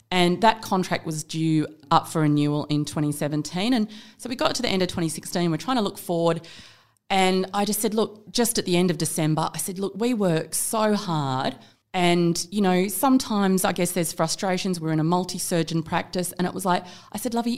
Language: English